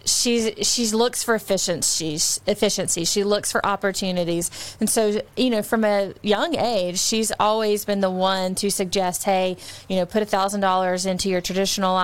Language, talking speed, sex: English, 175 wpm, female